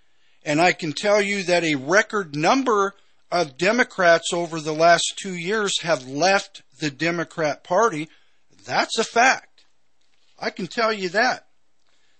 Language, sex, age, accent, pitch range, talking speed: English, male, 50-69, American, 140-190 Hz, 145 wpm